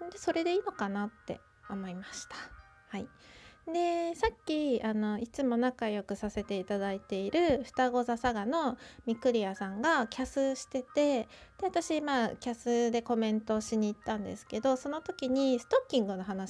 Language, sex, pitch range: Japanese, female, 210-280 Hz